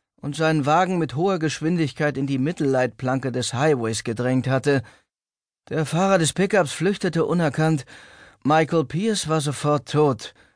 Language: German